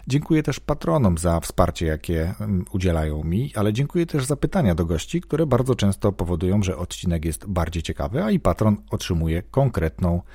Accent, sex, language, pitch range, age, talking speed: native, male, Polish, 80-115 Hz, 40-59, 170 wpm